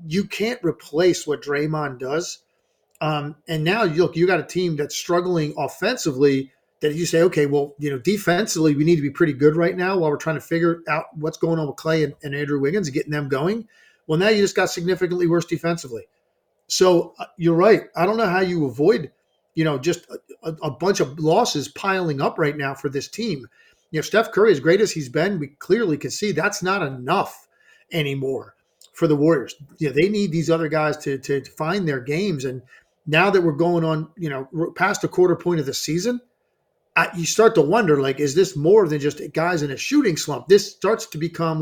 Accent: American